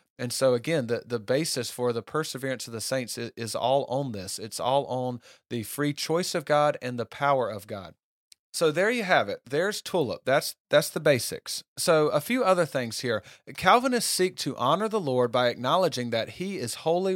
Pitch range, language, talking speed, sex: 120-160 Hz, English, 205 wpm, male